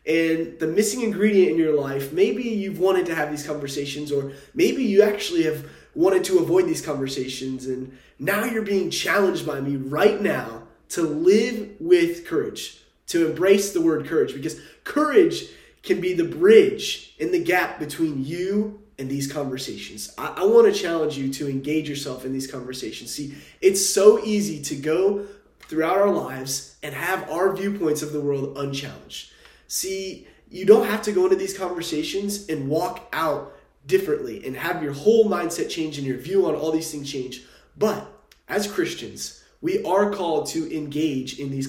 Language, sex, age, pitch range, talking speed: English, male, 20-39, 145-210 Hz, 175 wpm